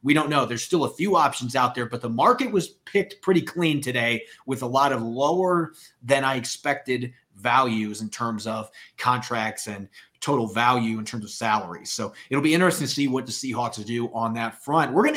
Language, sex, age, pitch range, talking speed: English, male, 30-49, 125-165 Hz, 210 wpm